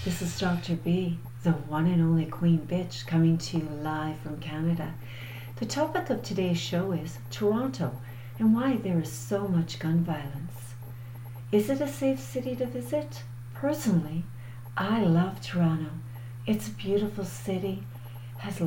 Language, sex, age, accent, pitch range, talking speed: English, female, 60-79, American, 120-185 Hz, 150 wpm